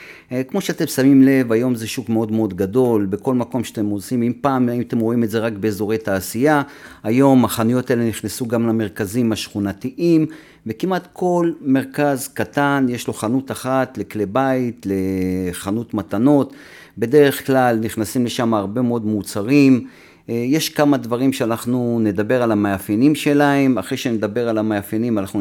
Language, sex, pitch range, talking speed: Hebrew, male, 105-135 Hz, 150 wpm